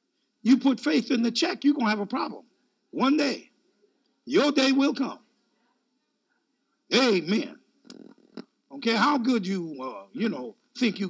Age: 50-69